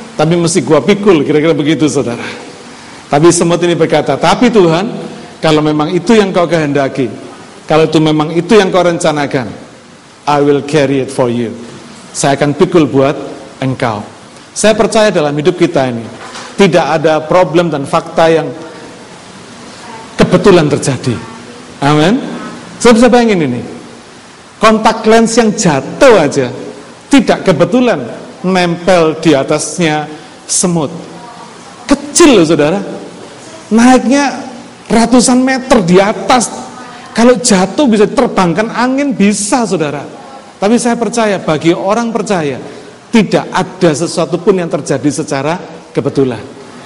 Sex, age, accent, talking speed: male, 50-69, native, 125 wpm